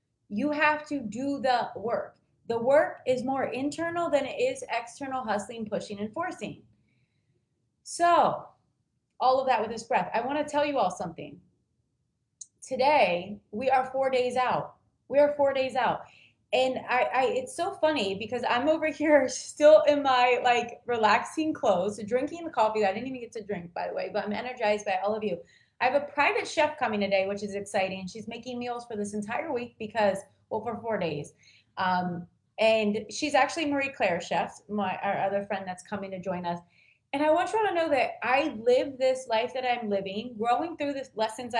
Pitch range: 210-275 Hz